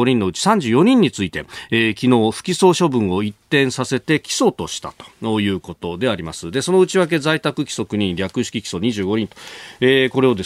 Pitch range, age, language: 100-150 Hz, 40-59, Japanese